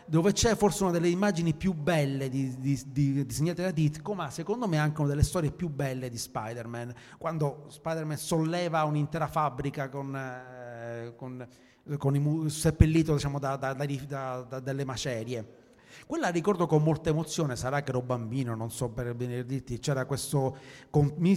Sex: male